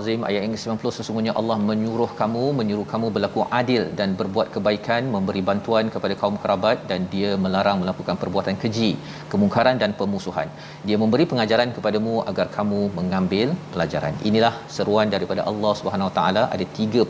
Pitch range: 105-130 Hz